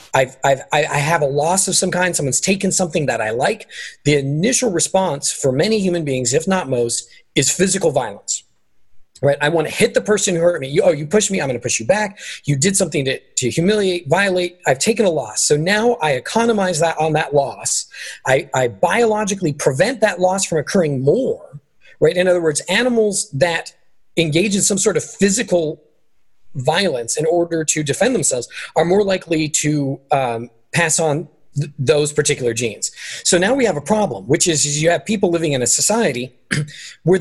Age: 30-49